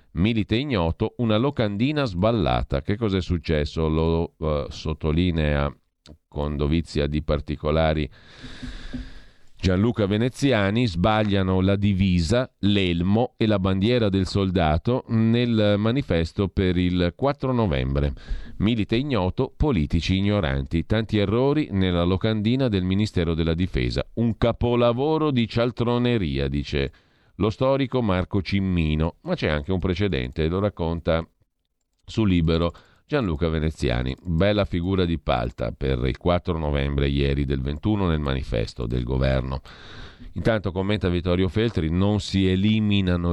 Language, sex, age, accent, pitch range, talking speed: Italian, male, 40-59, native, 80-105 Hz, 120 wpm